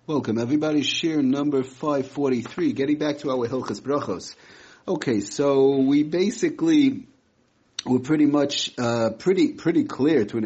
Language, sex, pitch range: English, male, 120-145 Hz